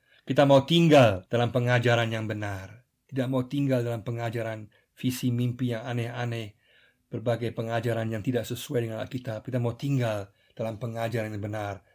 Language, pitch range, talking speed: Indonesian, 110-130 Hz, 150 wpm